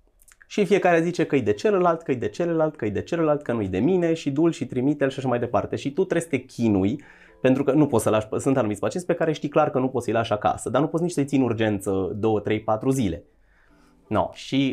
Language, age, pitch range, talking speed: Romanian, 20-39, 110-170 Hz, 300 wpm